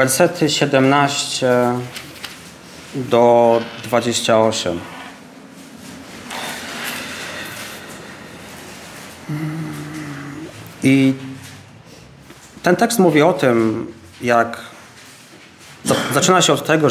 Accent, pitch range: native, 110-145 Hz